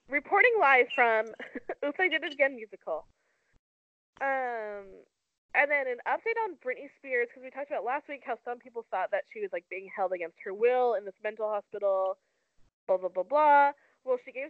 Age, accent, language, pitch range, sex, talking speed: 20-39, American, English, 220-315 Hz, female, 195 wpm